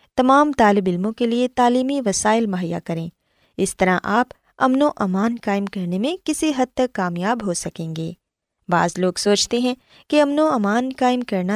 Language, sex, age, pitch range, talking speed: Urdu, female, 20-39, 185-260 Hz, 180 wpm